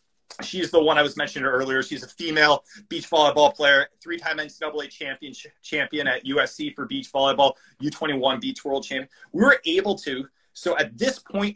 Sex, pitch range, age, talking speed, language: male, 155-220 Hz, 30-49, 175 wpm, English